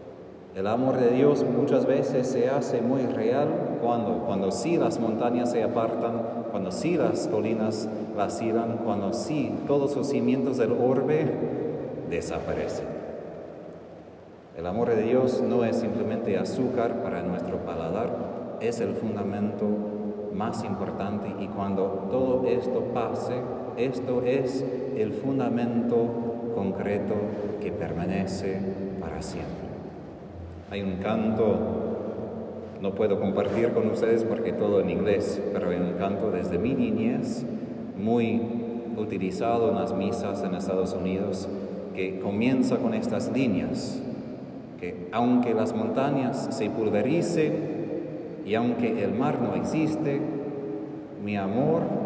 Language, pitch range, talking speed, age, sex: Spanish, 100-125 Hz, 120 wpm, 30-49, male